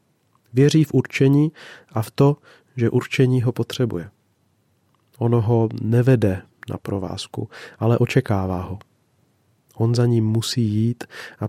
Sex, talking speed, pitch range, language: male, 125 wpm, 110-130 Hz, Czech